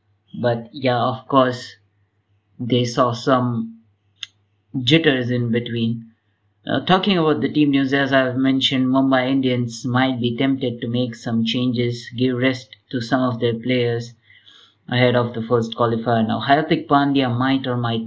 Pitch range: 115-130 Hz